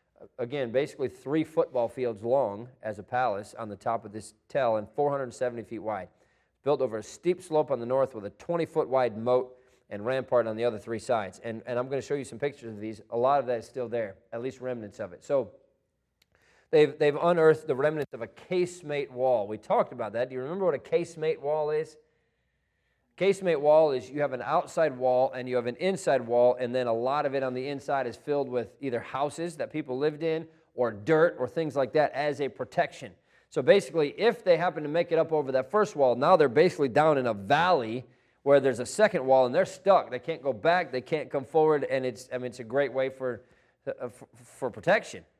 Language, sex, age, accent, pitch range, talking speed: English, male, 40-59, American, 125-160 Hz, 230 wpm